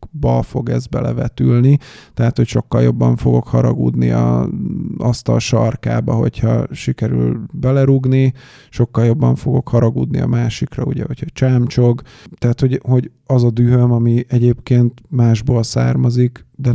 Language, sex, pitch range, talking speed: Hungarian, male, 115-130 Hz, 130 wpm